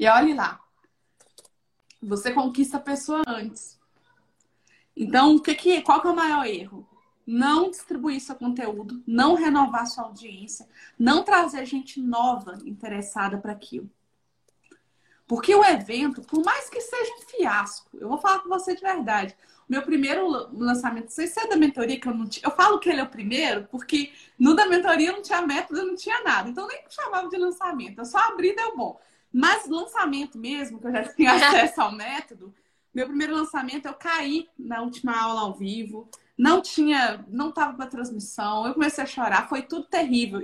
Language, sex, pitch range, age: Portuguese, female, 240-350 Hz, 20-39